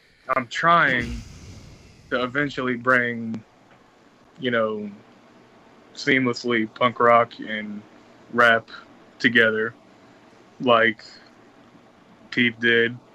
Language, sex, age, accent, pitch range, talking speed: English, male, 20-39, American, 110-125 Hz, 75 wpm